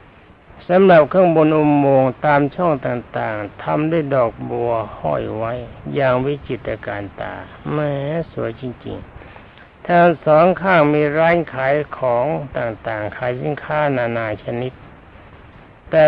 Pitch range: 115-150 Hz